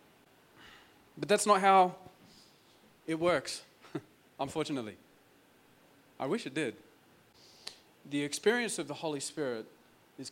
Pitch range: 135-175 Hz